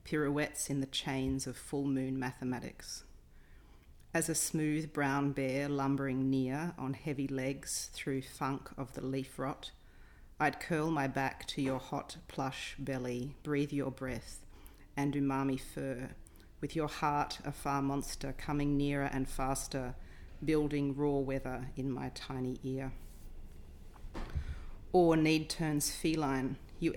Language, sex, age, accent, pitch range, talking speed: English, female, 40-59, Australian, 130-150 Hz, 135 wpm